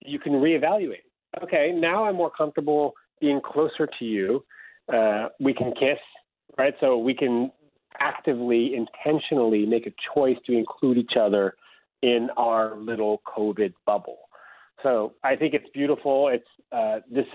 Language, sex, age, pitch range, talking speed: English, male, 30-49, 120-160 Hz, 145 wpm